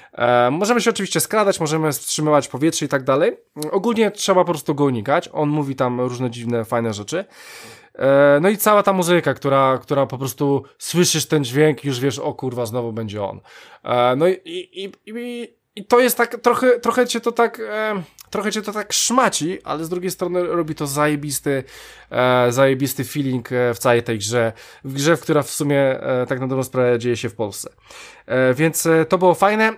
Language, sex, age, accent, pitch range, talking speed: Polish, male, 20-39, native, 125-175 Hz, 195 wpm